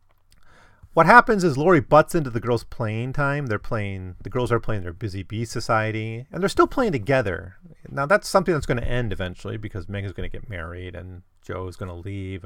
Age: 30-49